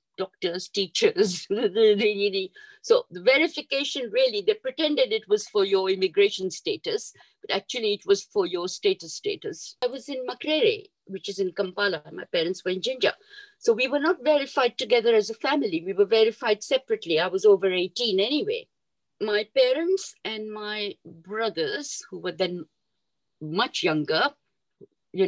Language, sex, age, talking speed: English, female, 50-69, 150 wpm